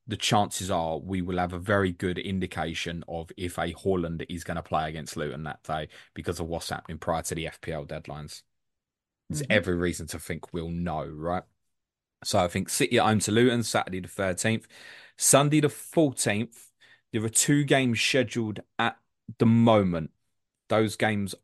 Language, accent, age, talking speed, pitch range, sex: English, British, 20-39, 175 wpm, 90-110 Hz, male